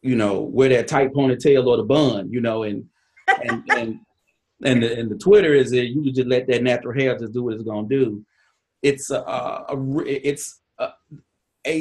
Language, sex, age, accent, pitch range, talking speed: English, male, 30-49, American, 115-140 Hz, 205 wpm